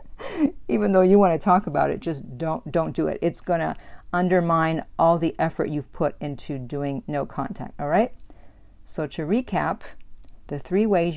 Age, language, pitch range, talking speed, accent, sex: 50-69, English, 145-190 Hz, 175 wpm, American, female